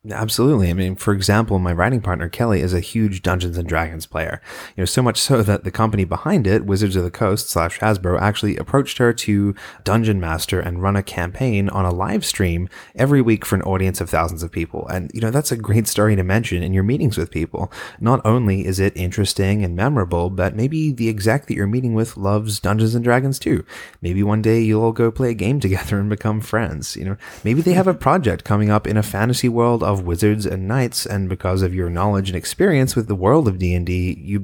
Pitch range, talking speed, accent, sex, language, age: 95-115 Hz, 230 wpm, American, male, English, 20-39